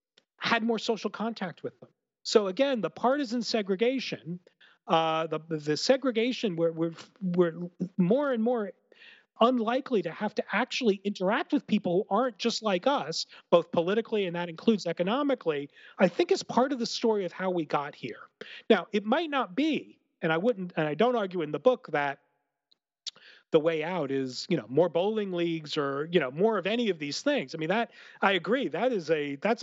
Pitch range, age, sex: 175-245 Hz, 40-59, male